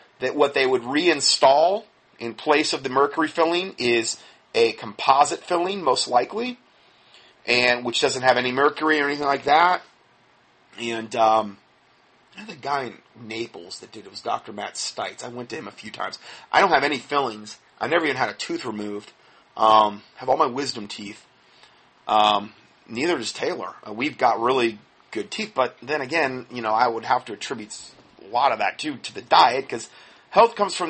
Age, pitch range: 30-49, 115-155 Hz